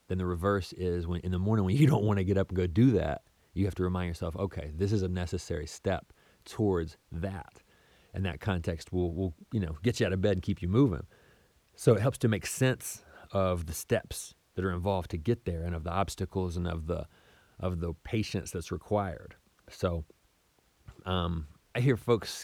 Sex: male